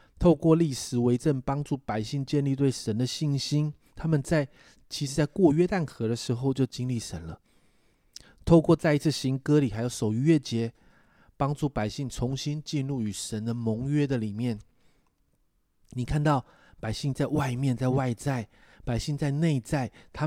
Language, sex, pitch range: Chinese, male, 110-145 Hz